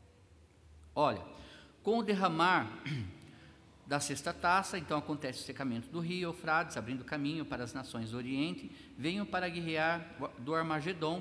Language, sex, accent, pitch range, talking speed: Portuguese, male, Brazilian, 145-200 Hz, 140 wpm